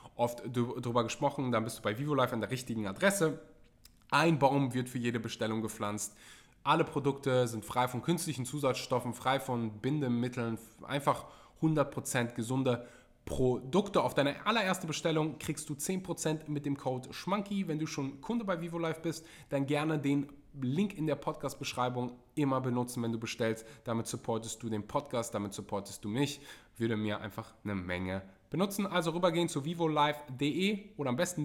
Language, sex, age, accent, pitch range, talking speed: German, male, 20-39, German, 110-145 Hz, 160 wpm